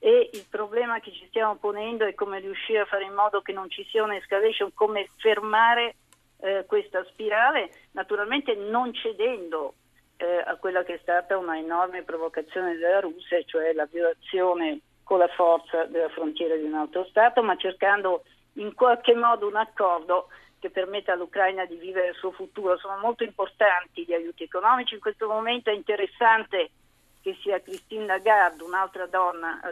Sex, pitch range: female, 180-230 Hz